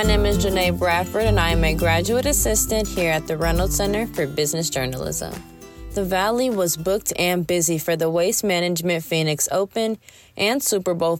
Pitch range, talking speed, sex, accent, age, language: 145-195 Hz, 180 wpm, female, American, 20-39, English